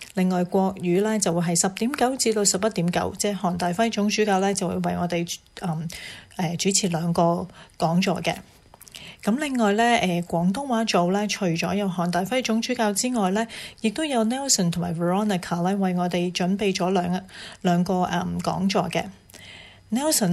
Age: 30-49